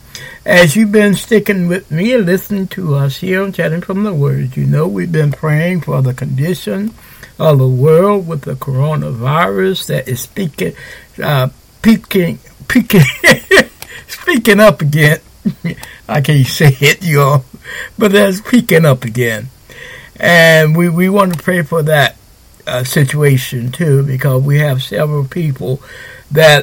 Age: 60-79